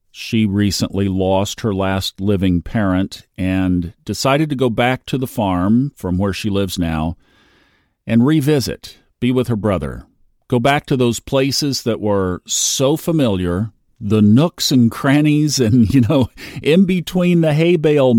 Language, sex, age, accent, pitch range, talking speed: English, male, 50-69, American, 95-135 Hz, 155 wpm